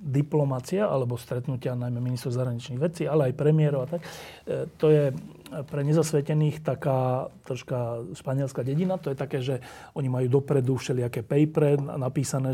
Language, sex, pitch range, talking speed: Slovak, male, 130-155 Hz, 145 wpm